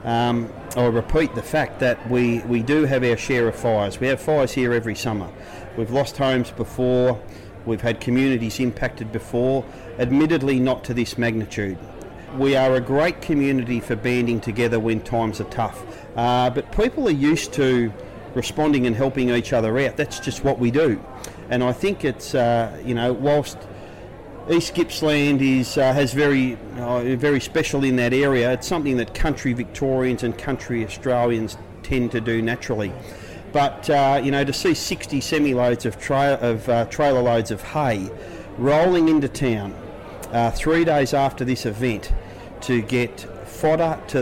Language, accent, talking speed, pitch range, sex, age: English, Australian, 170 wpm, 115-135 Hz, male, 40-59